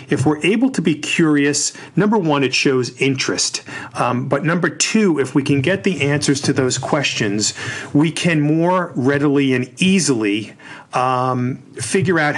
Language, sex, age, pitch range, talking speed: English, male, 40-59, 120-145 Hz, 160 wpm